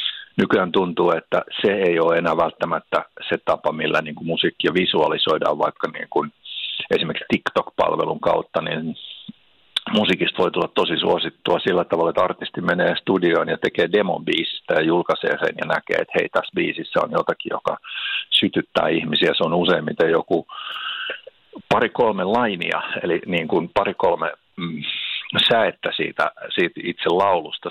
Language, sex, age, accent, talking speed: Finnish, male, 50-69, native, 130 wpm